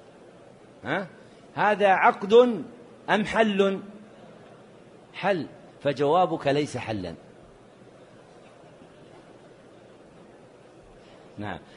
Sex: male